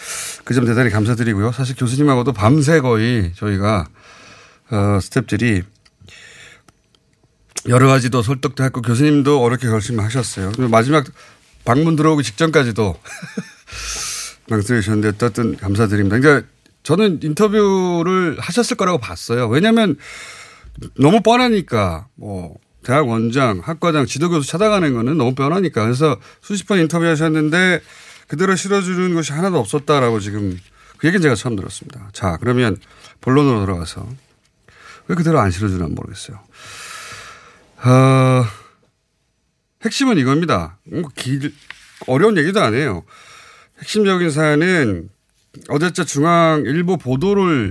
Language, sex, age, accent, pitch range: Korean, male, 30-49, native, 110-165 Hz